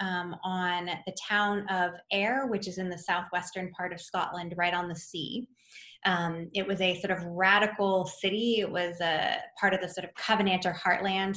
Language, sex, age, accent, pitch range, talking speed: English, female, 20-39, American, 175-210 Hz, 190 wpm